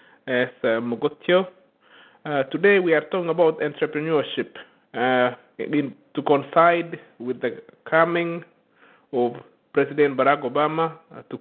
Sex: male